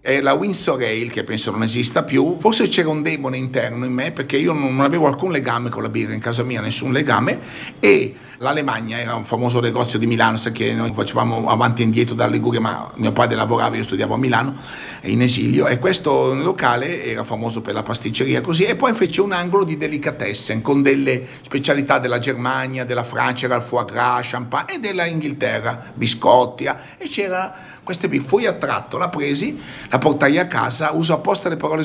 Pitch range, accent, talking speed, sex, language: 120-155 Hz, native, 200 wpm, male, Italian